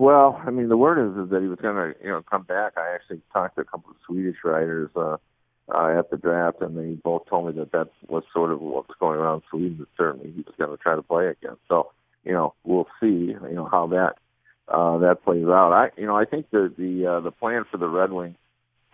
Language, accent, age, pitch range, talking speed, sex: English, American, 50-69, 80-95 Hz, 250 wpm, male